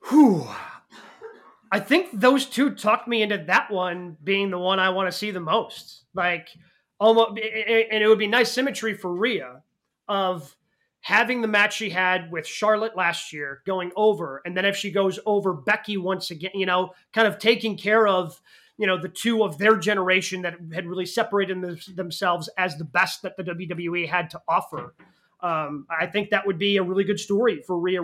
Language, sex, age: English, male, 30-49